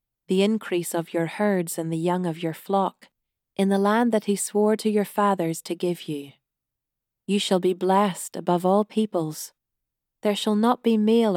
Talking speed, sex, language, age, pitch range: 185 wpm, female, English, 30-49, 170-205 Hz